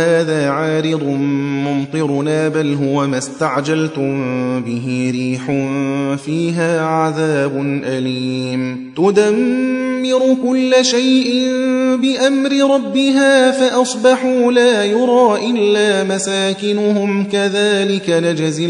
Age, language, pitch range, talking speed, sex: 30-49, Persian, 140-195 Hz, 75 wpm, male